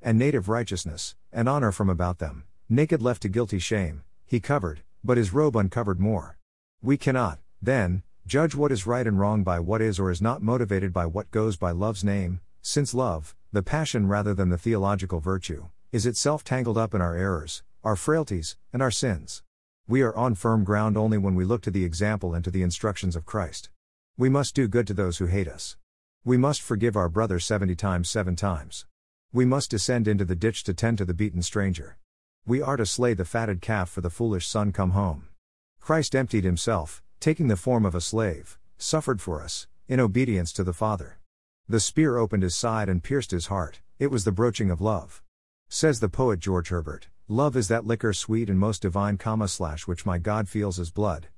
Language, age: English, 50-69